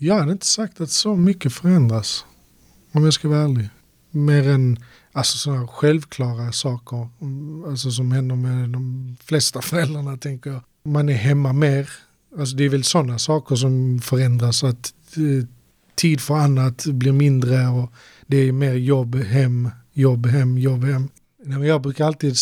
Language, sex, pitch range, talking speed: Swedish, male, 125-145 Hz, 165 wpm